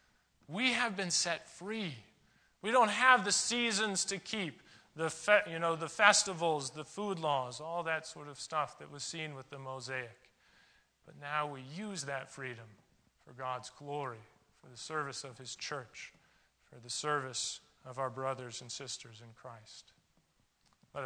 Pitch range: 130-165 Hz